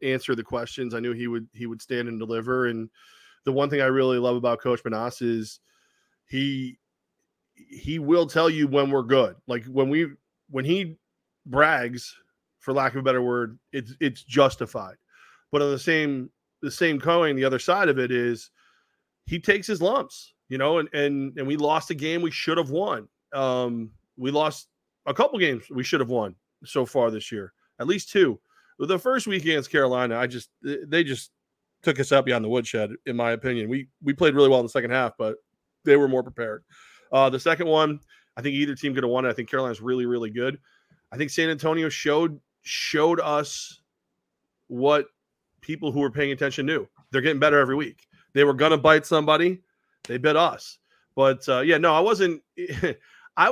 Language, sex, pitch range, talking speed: English, male, 125-160 Hz, 200 wpm